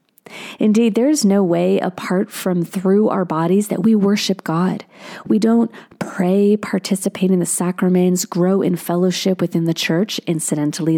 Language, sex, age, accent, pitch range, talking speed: English, female, 40-59, American, 175-215 Hz, 155 wpm